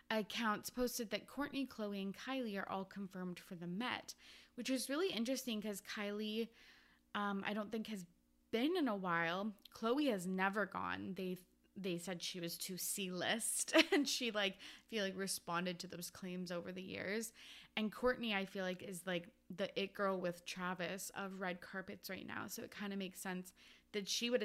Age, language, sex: 20-39, English, female